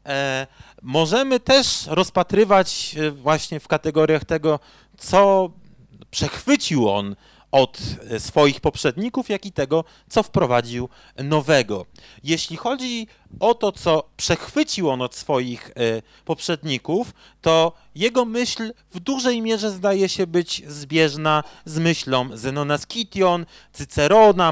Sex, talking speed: male, 110 wpm